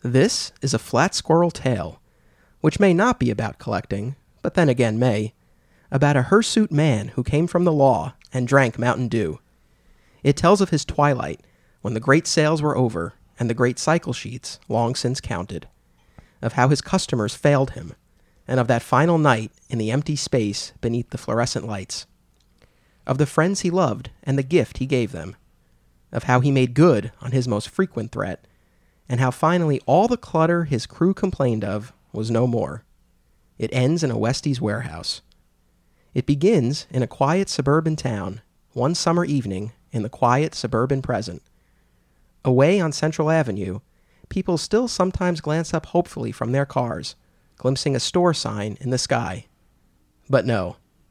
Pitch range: 110-155 Hz